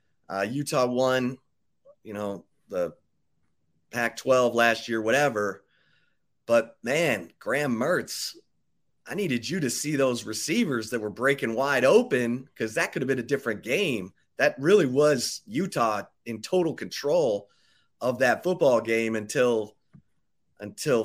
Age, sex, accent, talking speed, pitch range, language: 30-49, male, American, 135 wpm, 105-135 Hz, English